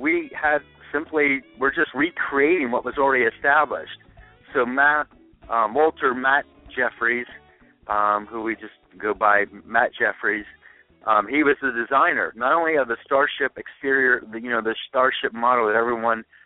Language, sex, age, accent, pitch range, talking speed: English, male, 50-69, American, 115-140 Hz, 155 wpm